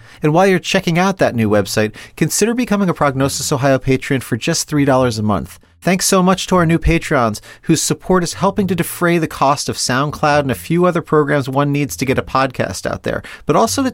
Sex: male